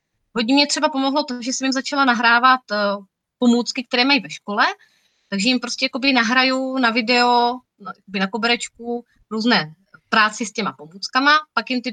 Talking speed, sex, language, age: 160 wpm, female, Czech, 30-49